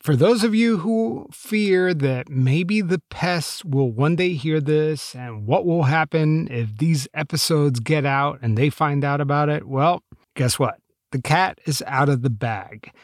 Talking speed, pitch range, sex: 185 wpm, 130-185 Hz, male